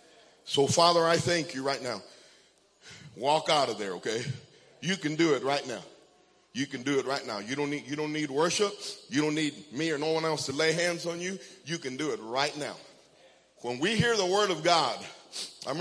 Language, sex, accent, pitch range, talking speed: English, male, American, 135-175 Hz, 220 wpm